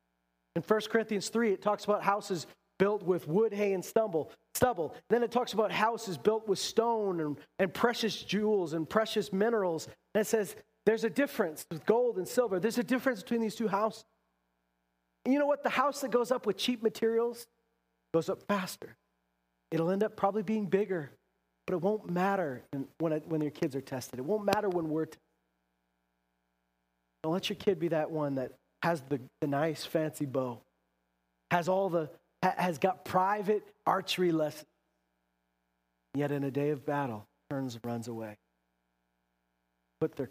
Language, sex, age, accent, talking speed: English, male, 30-49, American, 180 wpm